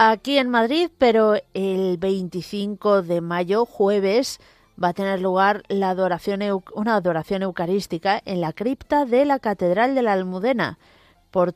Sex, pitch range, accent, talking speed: female, 175-225 Hz, Spanish, 150 wpm